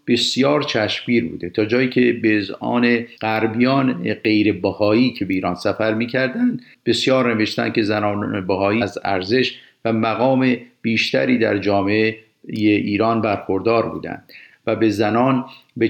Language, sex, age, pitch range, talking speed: Persian, male, 50-69, 100-120 Hz, 130 wpm